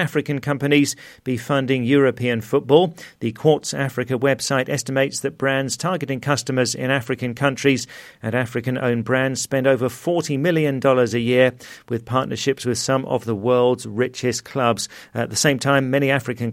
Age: 40-59